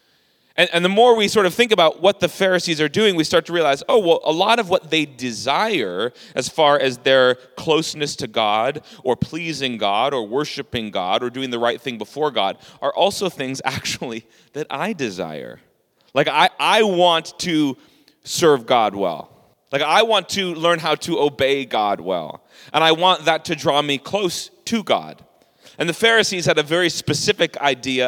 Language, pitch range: English, 130-185 Hz